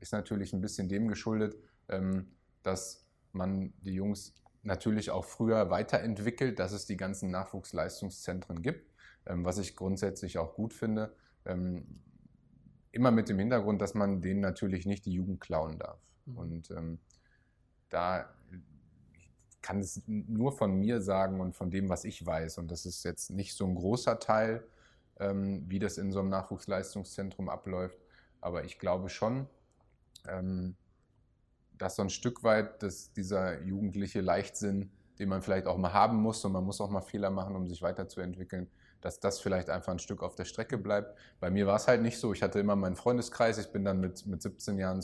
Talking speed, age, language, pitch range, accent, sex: 170 wpm, 20-39, German, 90-105 Hz, German, male